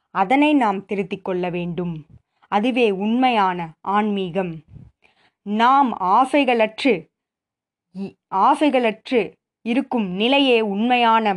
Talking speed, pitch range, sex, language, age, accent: 75 wpm, 190-255 Hz, female, Tamil, 20-39, native